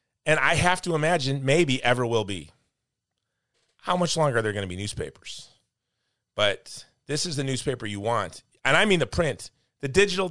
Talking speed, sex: 185 wpm, male